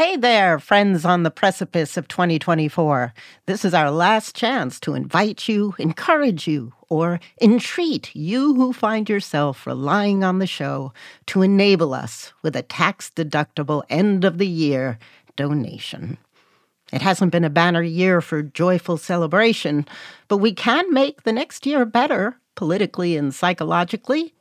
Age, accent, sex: 60-79, American, female